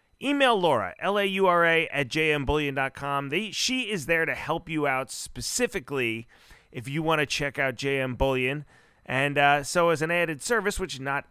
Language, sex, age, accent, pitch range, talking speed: English, male, 30-49, American, 125-160 Hz, 165 wpm